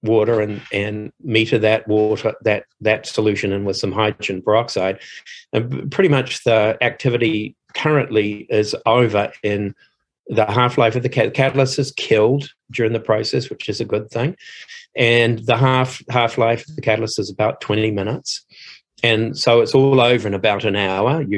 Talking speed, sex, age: 165 wpm, male, 40-59